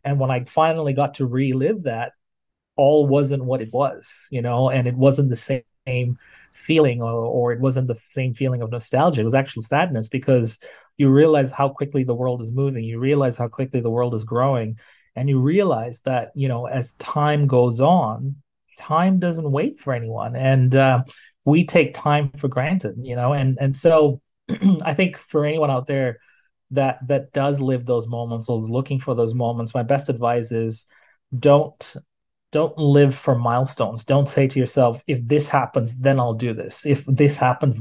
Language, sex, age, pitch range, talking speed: English, male, 30-49, 120-140 Hz, 190 wpm